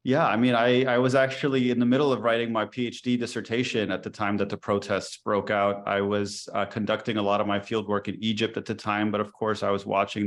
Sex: male